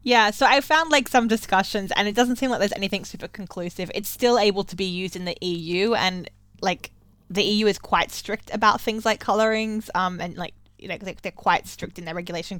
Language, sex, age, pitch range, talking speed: English, female, 20-39, 170-210 Hz, 215 wpm